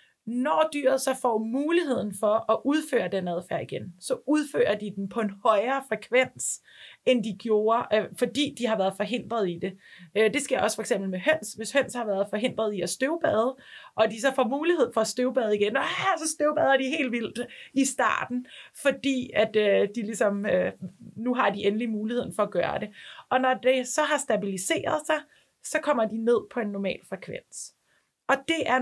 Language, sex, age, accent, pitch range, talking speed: Danish, female, 30-49, native, 210-260 Hz, 190 wpm